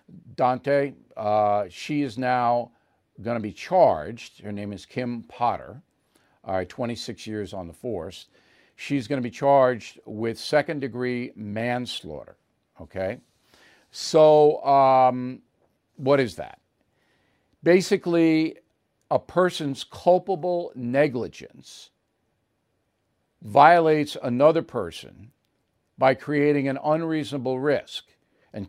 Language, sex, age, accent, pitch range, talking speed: English, male, 50-69, American, 110-145 Hz, 105 wpm